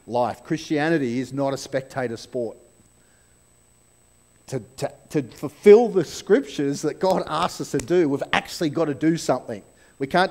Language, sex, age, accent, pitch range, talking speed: English, male, 40-59, Australian, 130-185 Hz, 150 wpm